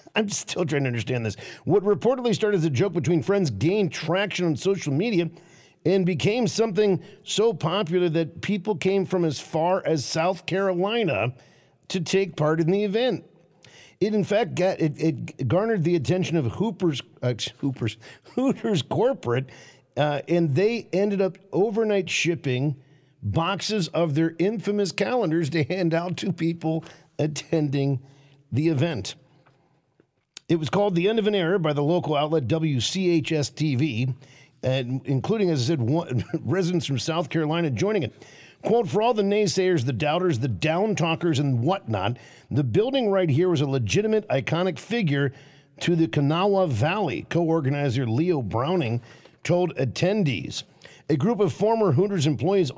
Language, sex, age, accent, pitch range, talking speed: English, male, 50-69, American, 140-195 Hz, 155 wpm